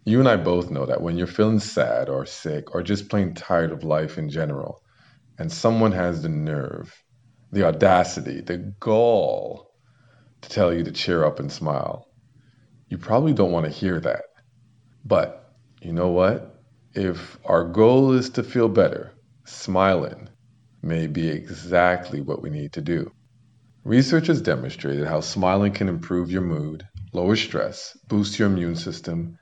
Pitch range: 85-120 Hz